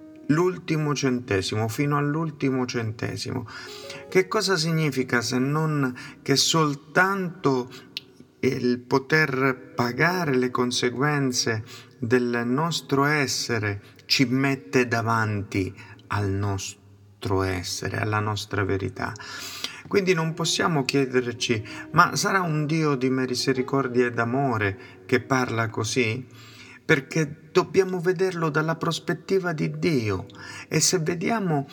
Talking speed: 100 wpm